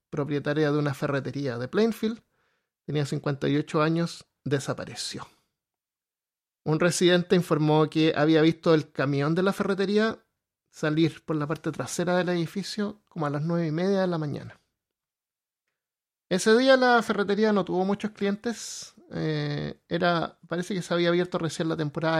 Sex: male